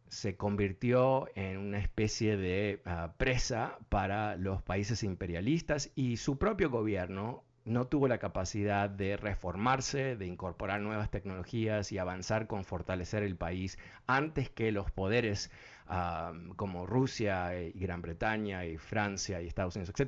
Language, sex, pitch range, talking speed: Spanish, male, 95-125 Hz, 135 wpm